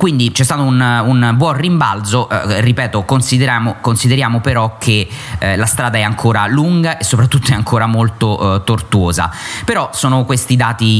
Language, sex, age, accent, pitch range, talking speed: Italian, male, 30-49, native, 110-130 Hz, 165 wpm